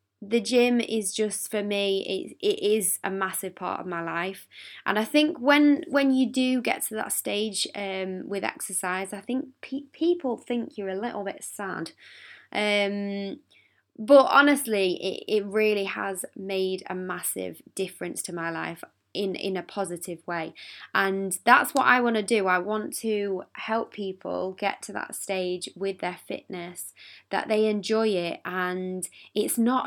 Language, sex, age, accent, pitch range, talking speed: English, female, 20-39, British, 185-235 Hz, 165 wpm